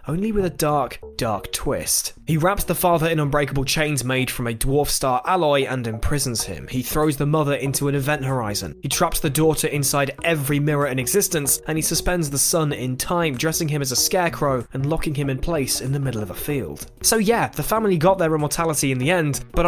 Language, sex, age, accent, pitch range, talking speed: English, male, 10-29, British, 130-175 Hz, 225 wpm